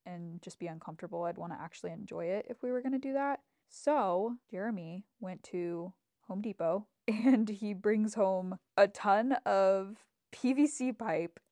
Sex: female